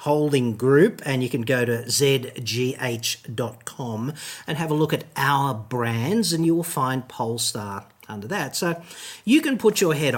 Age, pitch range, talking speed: 50-69, 115-160 Hz, 165 wpm